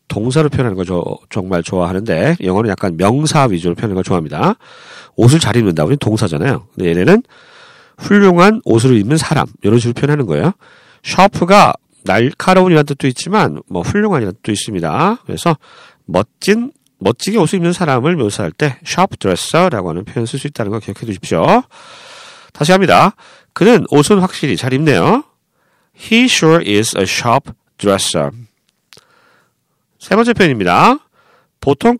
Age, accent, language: 40-59, native, Korean